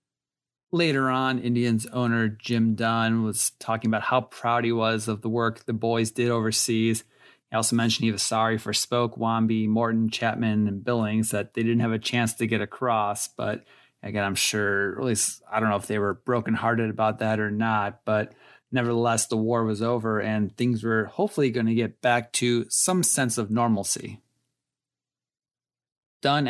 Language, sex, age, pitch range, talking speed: English, male, 30-49, 110-125 Hz, 180 wpm